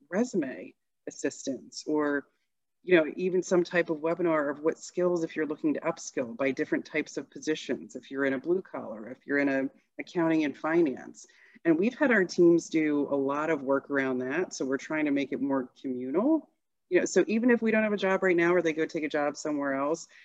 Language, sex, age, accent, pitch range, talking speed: English, female, 30-49, American, 140-175 Hz, 225 wpm